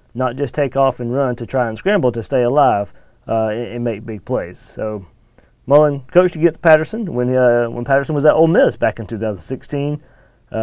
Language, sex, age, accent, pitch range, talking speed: English, male, 30-49, American, 115-140 Hz, 205 wpm